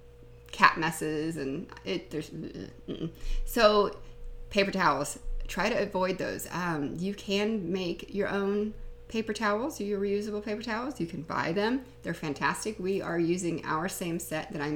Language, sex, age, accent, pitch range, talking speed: English, female, 30-49, American, 145-210 Hz, 160 wpm